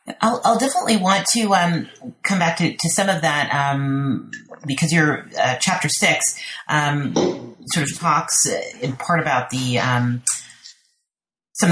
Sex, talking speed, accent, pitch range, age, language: female, 150 wpm, American, 130-165 Hz, 30-49, English